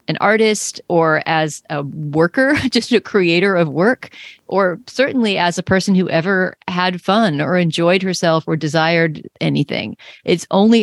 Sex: female